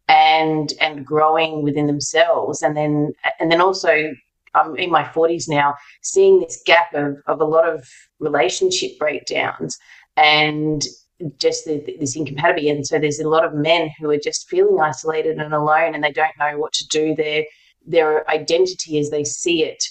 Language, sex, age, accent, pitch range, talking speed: English, female, 30-49, Australian, 145-160 Hz, 180 wpm